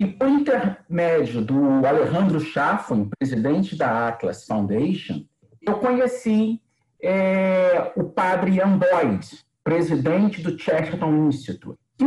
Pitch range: 150-220 Hz